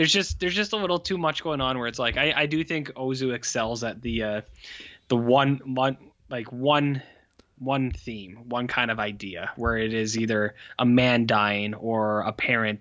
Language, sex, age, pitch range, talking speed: English, male, 10-29, 110-150 Hz, 200 wpm